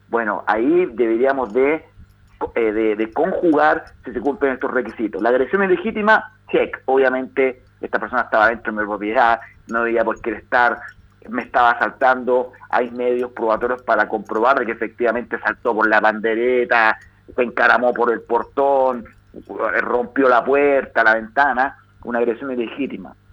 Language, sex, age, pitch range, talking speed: Spanish, male, 40-59, 115-145 Hz, 145 wpm